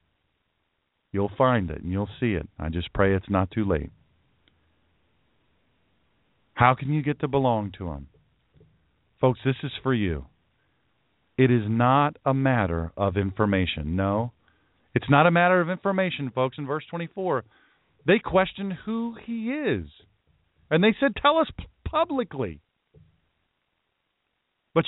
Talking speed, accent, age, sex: 135 wpm, American, 40-59, male